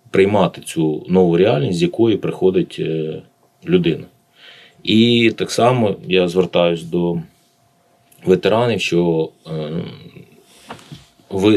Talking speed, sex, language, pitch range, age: 90 wpm, male, Ukrainian, 80-110 Hz, 30-49